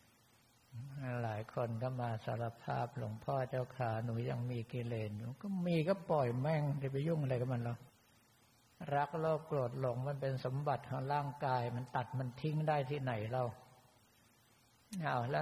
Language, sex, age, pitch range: Thai, male, 60-79, 120-145 Hz